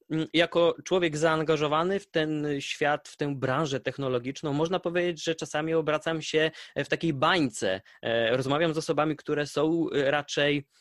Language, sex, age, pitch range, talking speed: Polish, male, 20-39, 135-160 Hz, 140 wpm